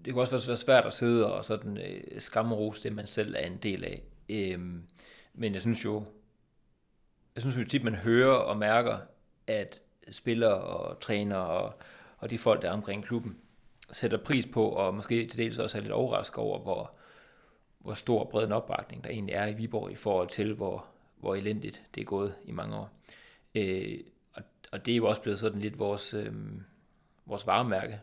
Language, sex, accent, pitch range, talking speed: Danish, male, native, 105-120 Hz, 195 wpm